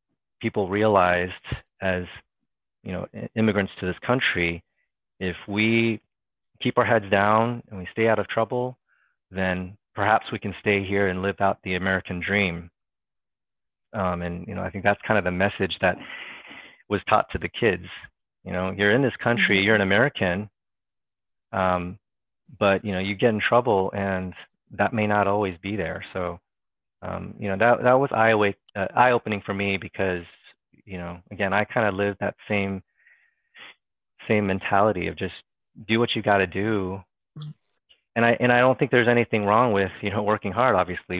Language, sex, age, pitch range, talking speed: English, male, 30-49, 90-105 Hz, 175 wpm